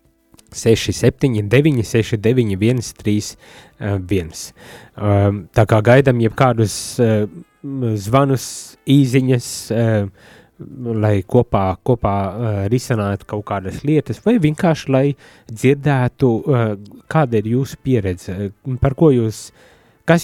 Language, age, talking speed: English, 20-39, 100 wpm